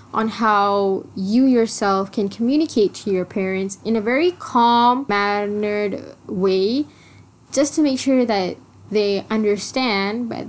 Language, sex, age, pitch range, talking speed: English, female, 10-29, 200-275 Hz, 135 wpm